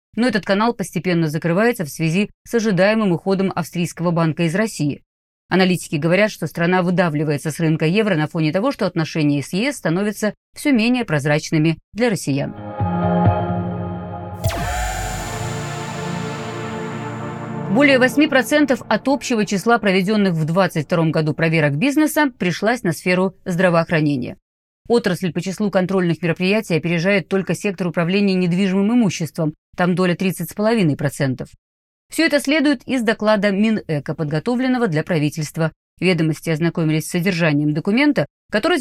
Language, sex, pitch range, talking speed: Russian, female, 160-215 Hz, 120 wpm